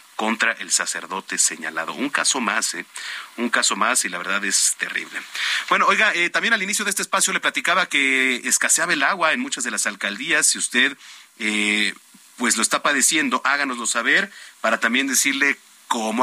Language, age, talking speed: Spanish, 40-59, 180 wpm